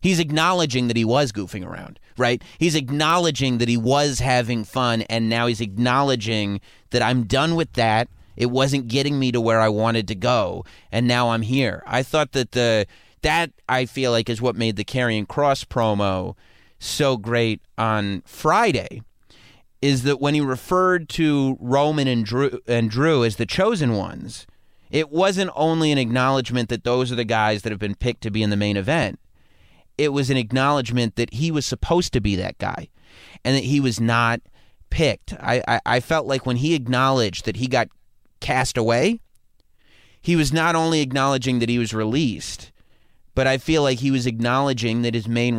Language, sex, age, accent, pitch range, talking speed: English, male, 30-49, American, 115-140 Hz, 185 wpm